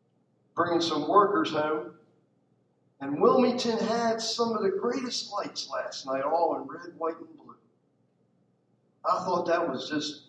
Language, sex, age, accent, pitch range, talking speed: English, male, 50-69, American, 155-215 Hz, 145 wpm